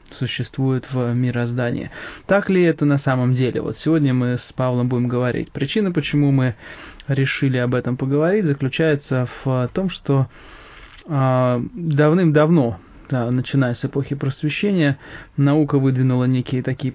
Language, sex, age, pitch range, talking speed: English, male, 20-39, 125-150 Hz, 125 wpm